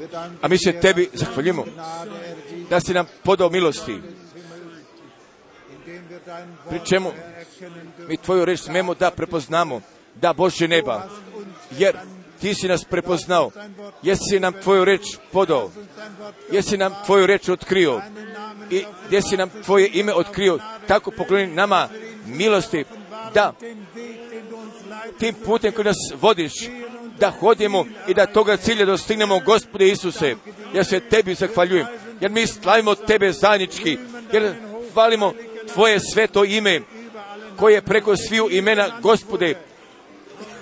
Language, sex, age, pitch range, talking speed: Croatian, male, 50-69, 185-215 Hz, 120 wpm